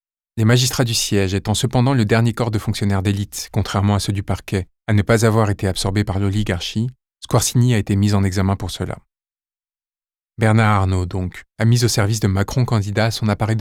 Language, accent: French, French